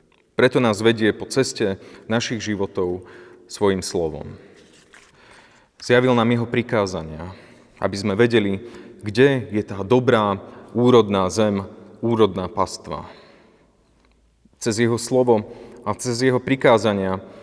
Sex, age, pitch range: male, 30-49, 100-120 Hz